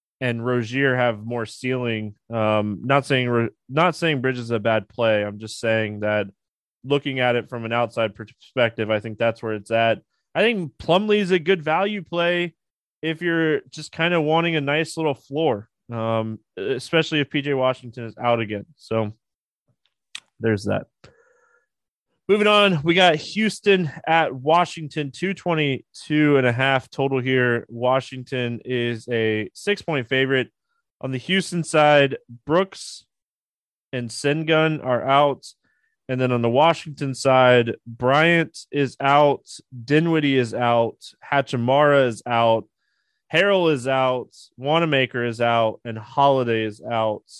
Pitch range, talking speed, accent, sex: 115-160 Hz, 140 wpm, American, male